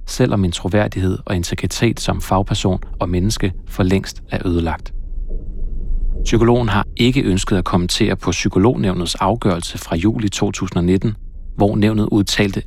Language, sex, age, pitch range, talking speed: Danish, male, 30-49, 90-105 Hz, 135 wpm